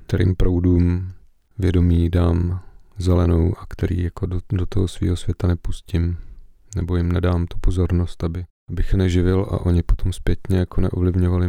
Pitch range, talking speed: 90-95 Hz, 145 wpm